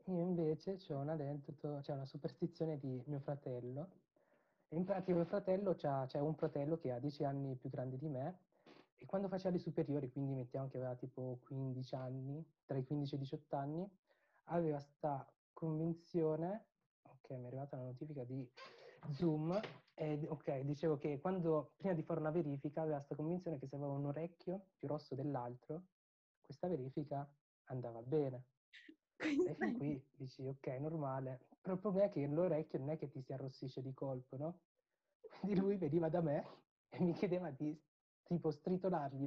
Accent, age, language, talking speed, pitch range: native, 30-49, Italian, 170 wpm, 140-175 Hz